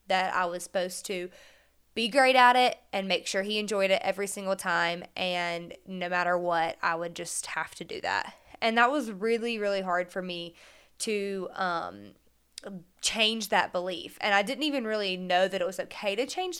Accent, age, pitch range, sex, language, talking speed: American, 20-39, 185-225 Hz, female, English, 195 wpm